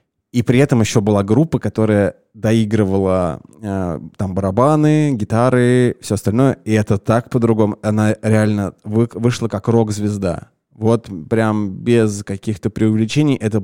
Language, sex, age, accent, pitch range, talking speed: Russian, male, 20-39, native, 100-115 Hz, 125 wpm